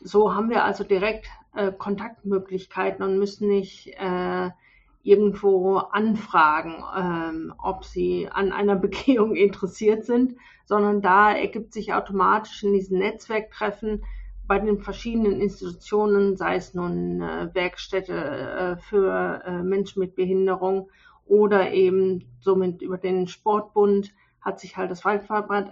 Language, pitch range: German, 185-205 Hz